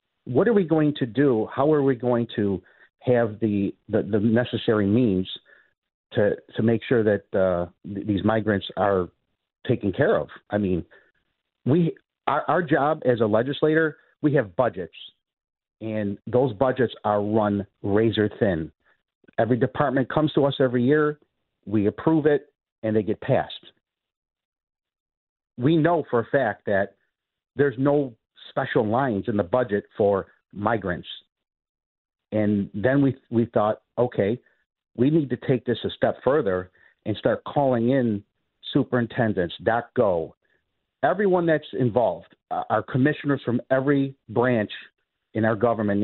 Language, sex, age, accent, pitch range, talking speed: English, male, 50-69, American, 105-140 Hz, 145 wpm